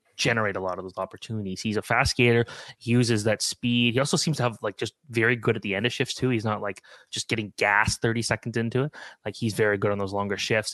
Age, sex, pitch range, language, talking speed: 20-39, male, 110-125 Hz, English, 265 wpm